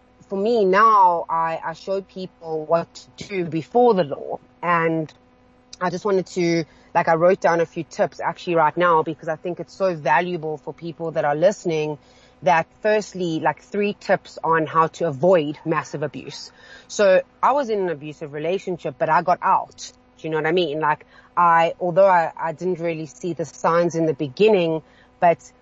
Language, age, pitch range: English, 30-49, 160-190 Hz